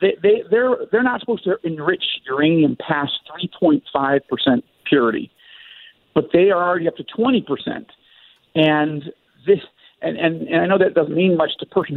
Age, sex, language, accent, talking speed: 50-69, male, English, American, 175 wpm